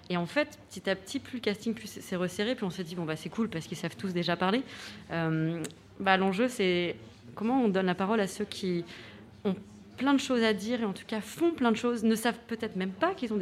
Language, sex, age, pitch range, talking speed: French, female, 30-49, 180-225 Hz, 265 wpm